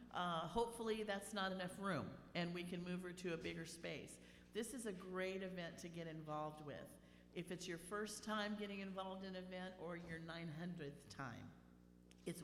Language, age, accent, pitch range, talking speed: English, 50-69, American, 160-200 Hz, 190 wpm